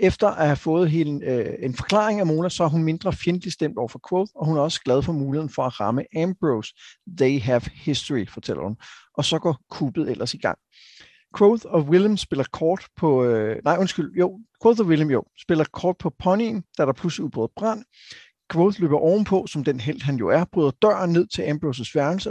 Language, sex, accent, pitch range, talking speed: Danish, male, native, 140-180 Hz, 190 wpm